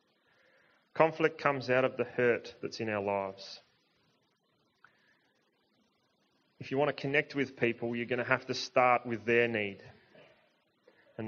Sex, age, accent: male, 30-49, Australian